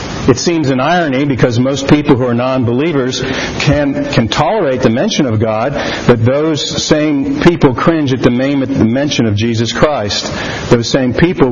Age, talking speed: 50-69, 160 wpm